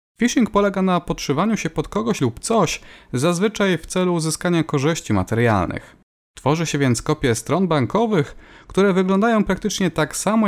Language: Polish